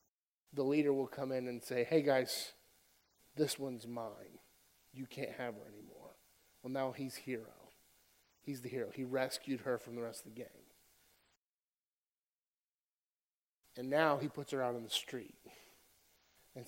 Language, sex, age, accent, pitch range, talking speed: English, male, 30-49, American, 110-145 Hz, 155 wpm